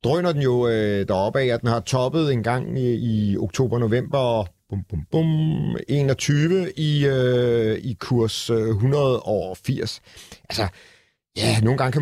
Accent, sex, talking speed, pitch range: native, male, 135 wpm, 115-145 Hz